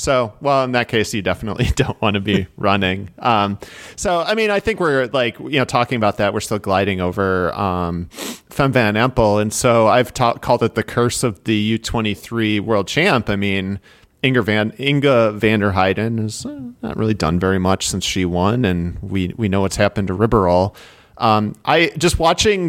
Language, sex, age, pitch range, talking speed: English, male, 40-59, 100-125 Hz, 200 wpm